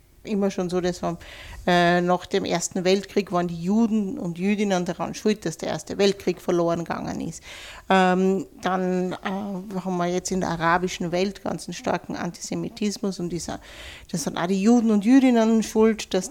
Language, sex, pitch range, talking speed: German, female, 180-205 Hz, 175 wpm